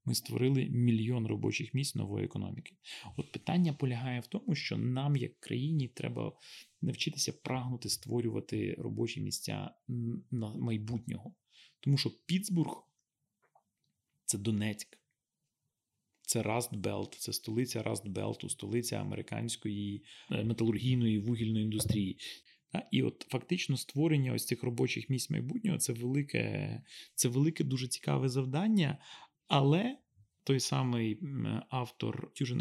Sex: male